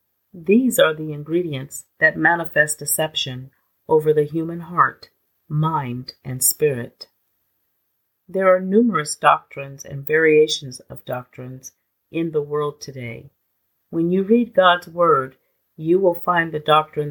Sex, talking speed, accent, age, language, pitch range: female, 125 wpm, American, 40-59, English, 140-180 Hz